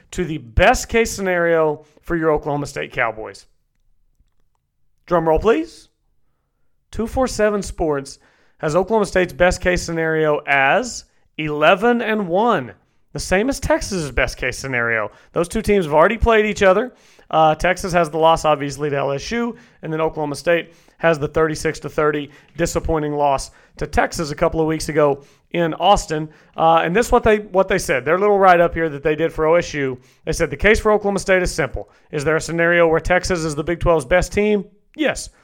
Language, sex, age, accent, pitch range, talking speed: English, male, 40-59, American, 150-185 Hz, 185 wpm